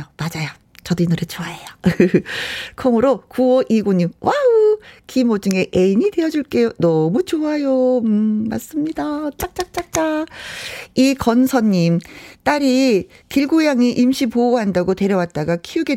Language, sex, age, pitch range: Korean, female, 40-59, 190-275 Hz